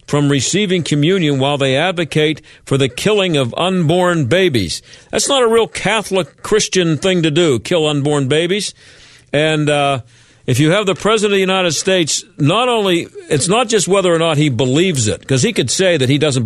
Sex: male